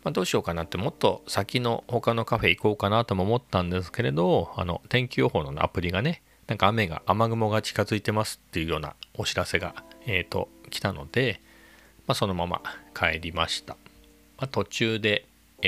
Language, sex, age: Japanese, male, 40-59